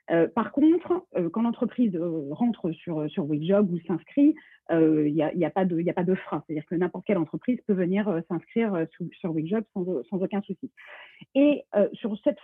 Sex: female